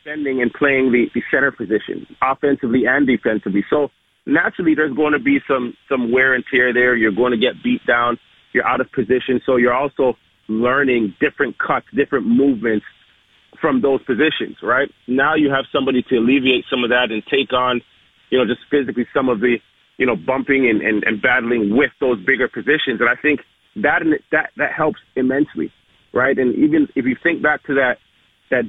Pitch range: 125-145 Hz